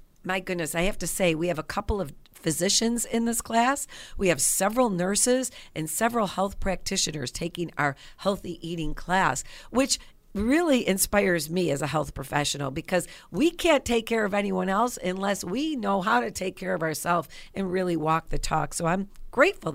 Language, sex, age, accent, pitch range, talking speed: English, female, 50-69, American, 160-215 Hz, 185 wpm